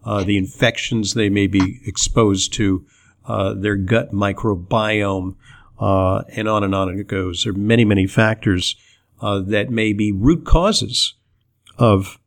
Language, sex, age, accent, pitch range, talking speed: English, male, 50-69, American, 100-125 Hz, 150 wpm